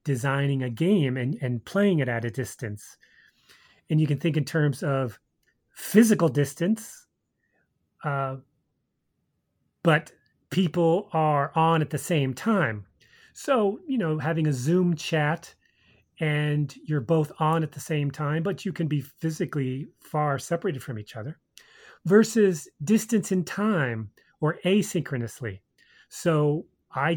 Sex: male